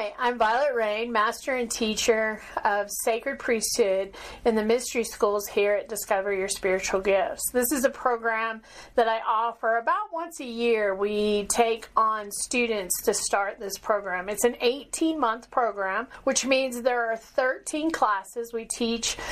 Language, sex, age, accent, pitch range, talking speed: English, female, 40-59, American, 210-255 Hz, 155 wpm